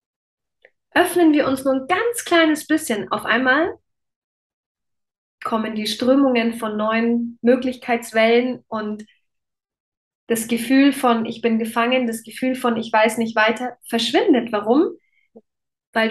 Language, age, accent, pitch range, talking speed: German, 20-39, German, 220-250 Hz, 125 wpm